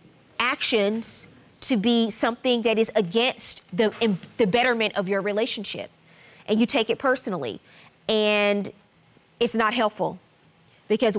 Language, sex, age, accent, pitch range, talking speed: English, female, 20-39, American, 190-230 Hz, 125 wpm